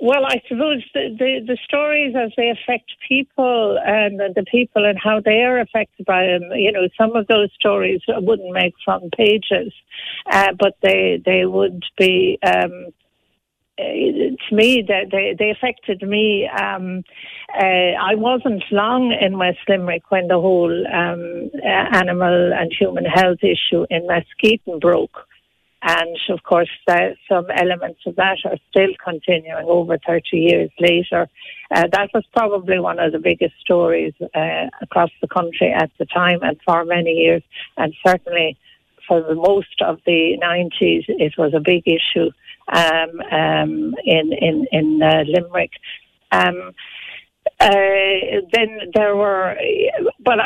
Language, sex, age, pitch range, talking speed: English, female, 60-79, 170-215 Hz, 150 wpm